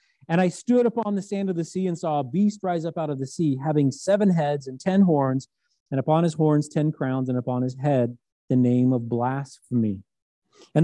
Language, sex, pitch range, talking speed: English, male, 130-180 Hz, 220 wpm